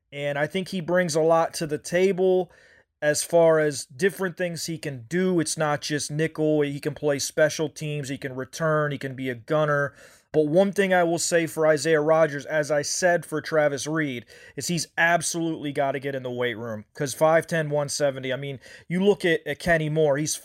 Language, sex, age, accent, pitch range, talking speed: English, male, 30-49, American, 145-165 Hz, 210 wpm